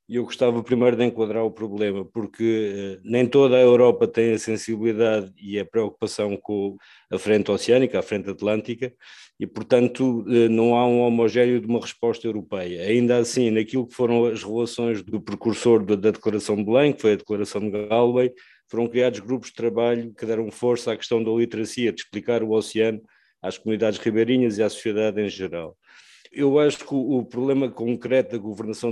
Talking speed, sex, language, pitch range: 180 wpm, male, English, 105-120 Hz